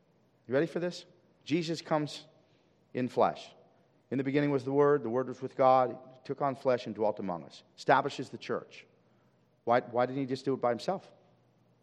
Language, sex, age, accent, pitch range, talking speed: English, male, 40-59, American, 125-165 Hz, 200 wpm